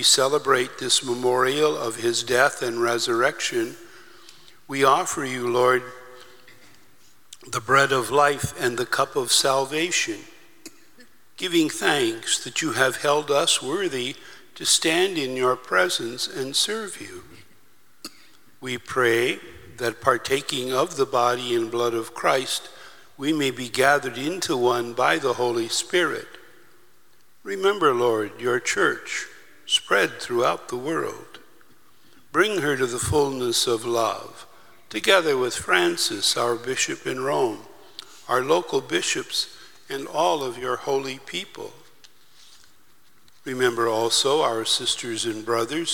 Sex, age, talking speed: male, 60-79, 125 wpm